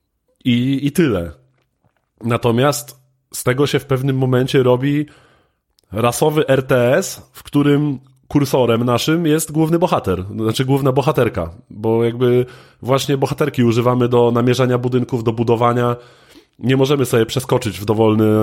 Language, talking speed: Polish, 125 wpm